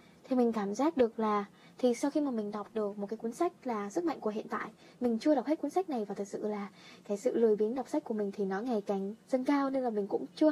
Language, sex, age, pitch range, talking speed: Vietnamese, female, 10-29, 210-295 Hz, 300 wpm